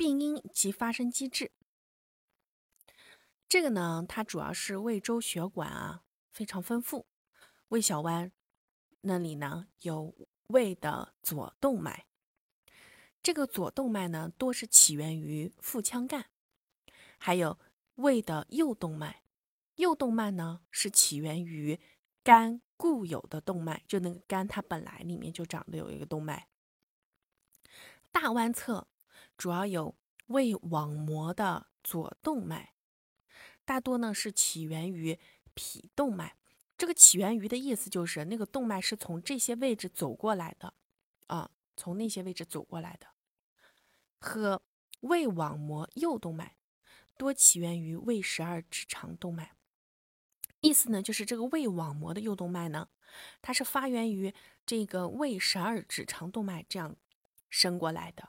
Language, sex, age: Chinese, female, 20-39